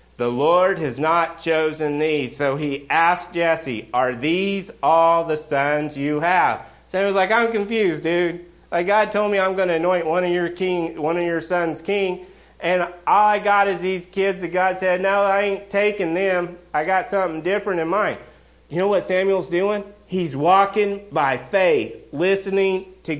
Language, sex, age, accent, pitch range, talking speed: English, male, 40-59, American, 145-190 Hz, 185 wpm